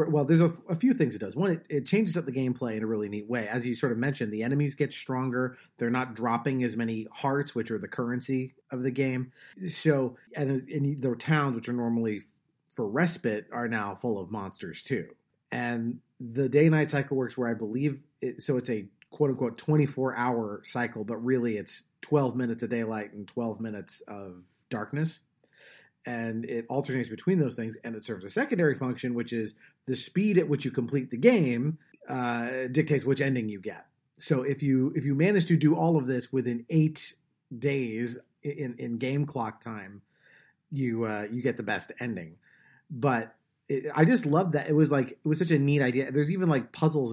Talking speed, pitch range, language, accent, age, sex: 200 wpm, 115-145 Hz, English, American, 30-49, male